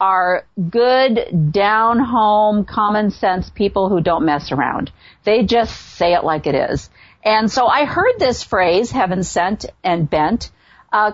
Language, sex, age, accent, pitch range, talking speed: English, female, 50-69, American, 180-235 Hz, 140 wpm